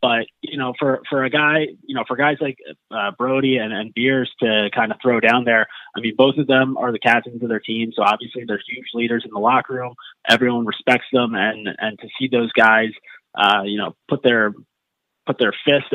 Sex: male